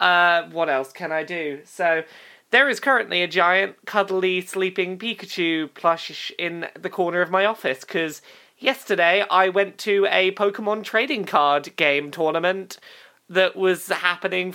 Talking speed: 150 wpm